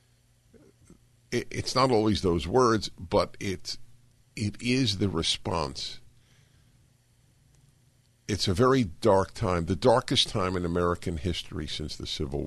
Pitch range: 85-120 Hz